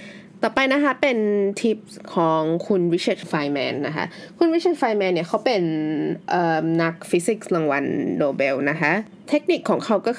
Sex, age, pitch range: female, 20-39, 160-200 Hz